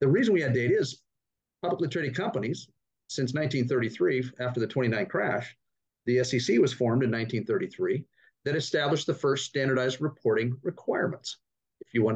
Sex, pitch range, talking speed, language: male, 125-150 Hz, 155 wpm, English